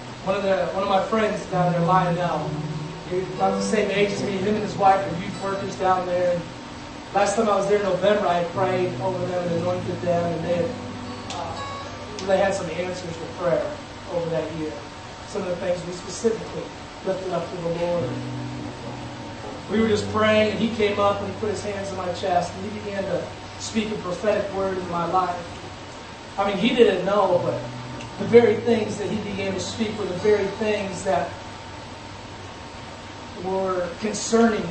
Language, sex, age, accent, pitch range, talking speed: English, male, 20-39, American, 125-205 Hz, 190 wpm